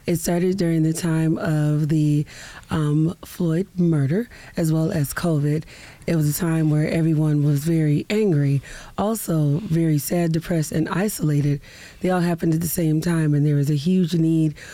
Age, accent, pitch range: 30-49, American, 155-185 Hz